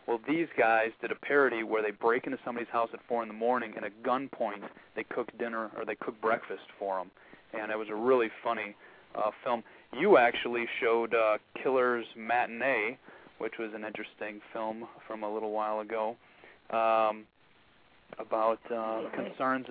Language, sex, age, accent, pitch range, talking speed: English, male, 30-49, American, 110-125 Hz, 175 wpm